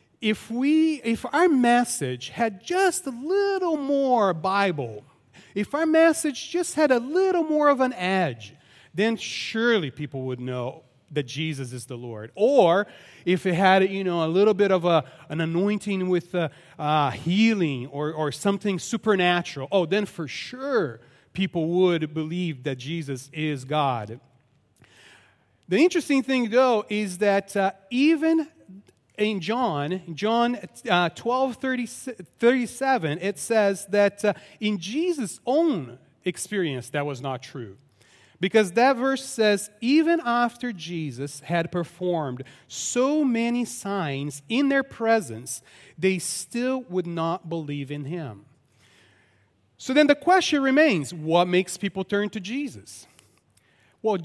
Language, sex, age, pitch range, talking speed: English, male, 30-49, 145-240 Hz, 135 wpm